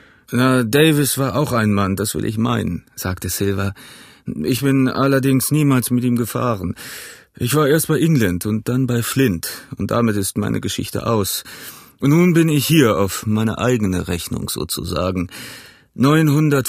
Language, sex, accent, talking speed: German, male, German, 160 wpm